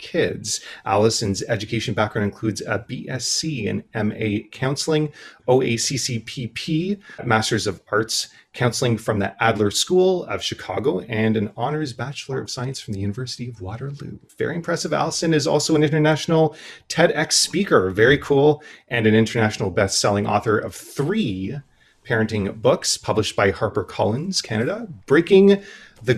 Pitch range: 105-140 Hz